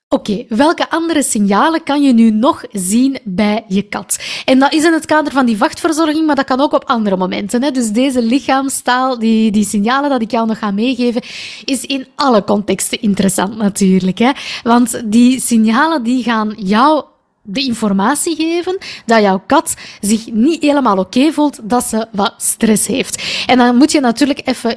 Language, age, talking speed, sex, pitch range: Dutch, 20-39, 190 wpm, female, 215-275 Hz